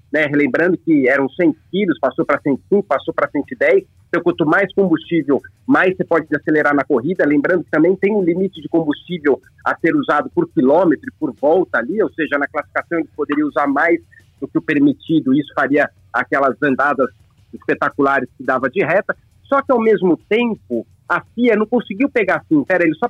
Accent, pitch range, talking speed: Brazilian, 155-245 Hz, 190 wpm